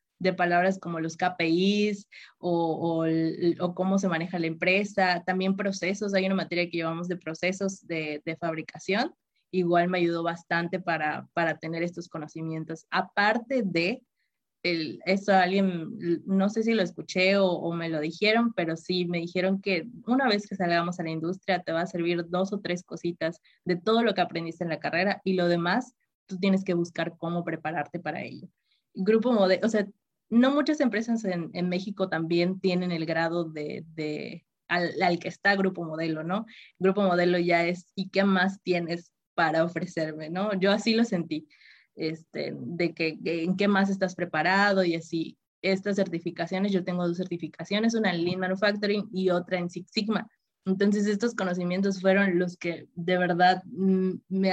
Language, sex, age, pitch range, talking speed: Spanish, female, 20-39, 170-195 Hz, 175 wpm